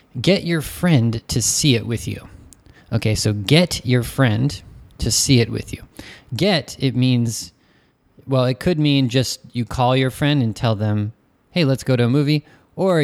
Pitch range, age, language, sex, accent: 105-135 Hz, 20-39, Japanese, male, American